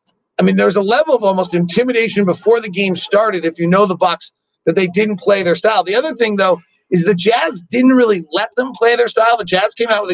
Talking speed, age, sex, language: 255 wpm, 40-59, male, English